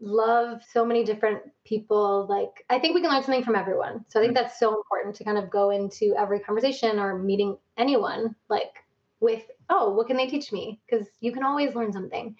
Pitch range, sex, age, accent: 210-240 Hz, female, 20-39, American